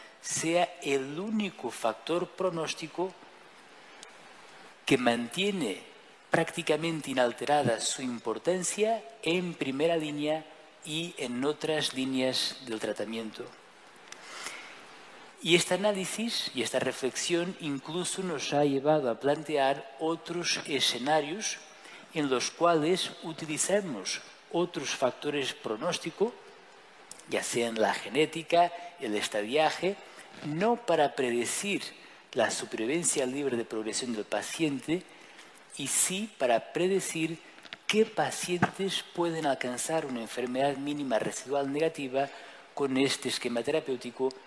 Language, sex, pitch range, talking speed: Spanish, male, 130-175 Hz, 100 wpm